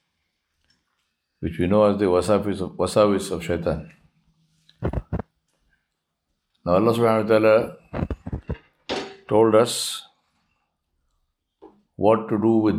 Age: 50-69